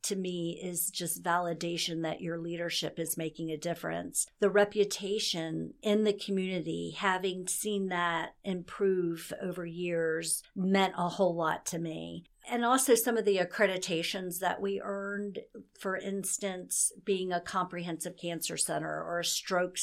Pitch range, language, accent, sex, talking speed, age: 170-200 Hz, English, American, female, 145 wpm, 50-69